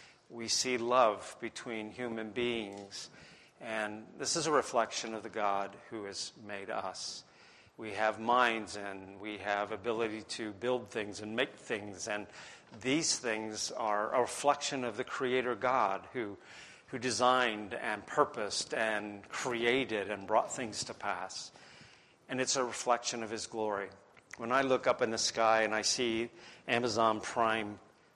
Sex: male